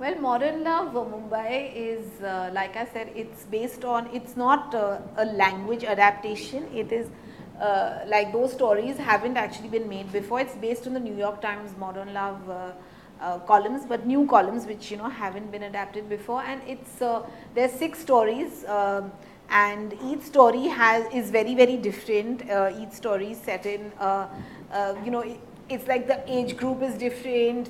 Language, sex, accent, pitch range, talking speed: Hindi, female, native, 210-255 Hz, 185 wpm